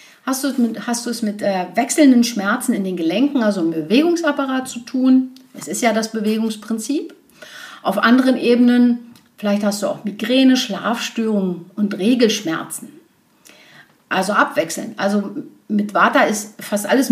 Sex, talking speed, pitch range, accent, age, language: female, 140 wpm, 200-260 Hz, German, 50-69, German